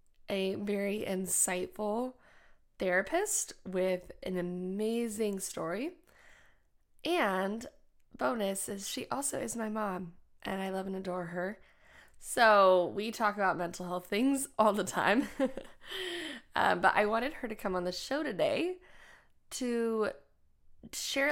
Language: English